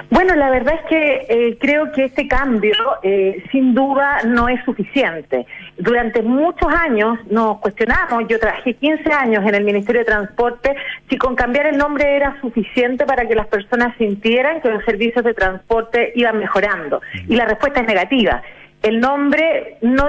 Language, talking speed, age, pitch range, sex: Spanish, 170 wpm, 40-59, 210-275 Hz, female